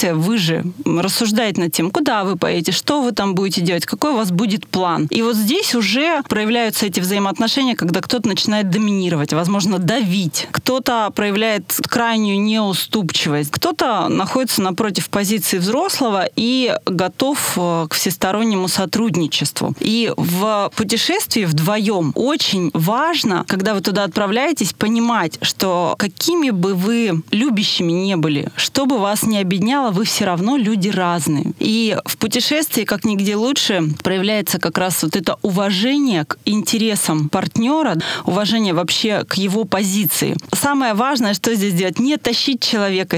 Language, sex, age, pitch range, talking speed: Russian, female, 30-49, 185-230 Hz, 140 wpm